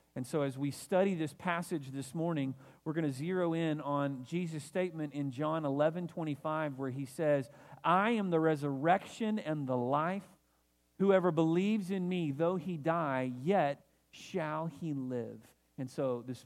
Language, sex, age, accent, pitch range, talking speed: English, male, 40-59, American, 125-160 Hz, 170 wpm